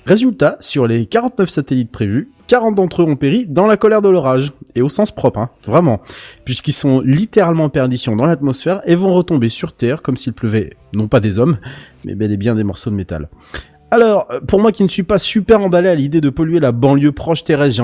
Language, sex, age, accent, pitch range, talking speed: French, male, 30-49, French, 110-155 Hz, 225 wpm